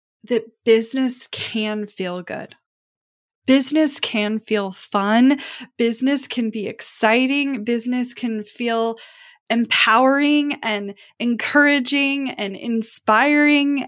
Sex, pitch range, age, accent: female, 210-255 Hz, 10-29, American